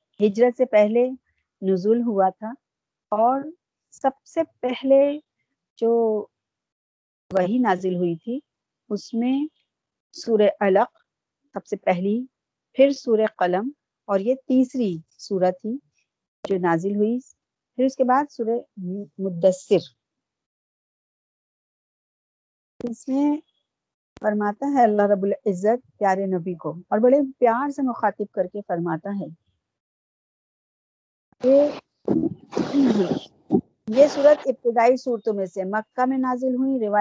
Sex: female